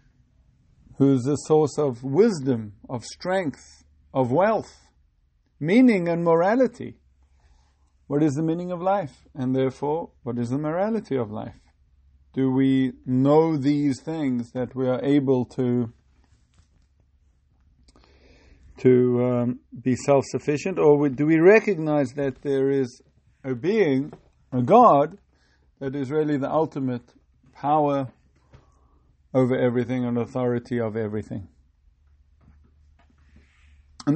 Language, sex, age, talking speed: English, male, 50-69, 115 wpm